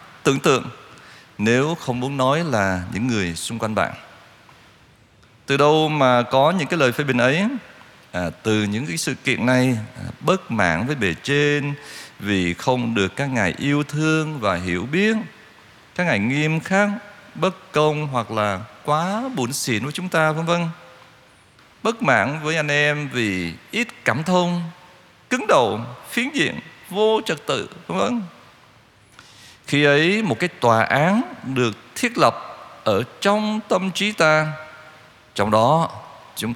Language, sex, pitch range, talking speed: Vietnamese, male, 115-170 Hz, 160 wpm